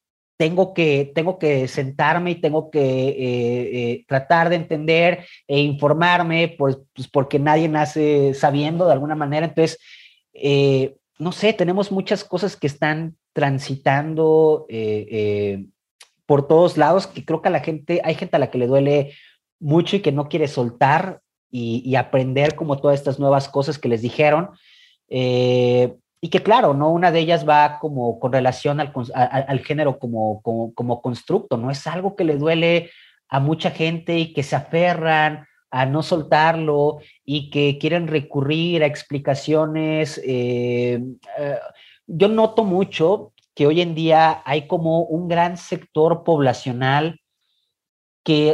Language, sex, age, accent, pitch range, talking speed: Spanish, male, 30-49, Mexican, 135-170 Hz, 155 wpm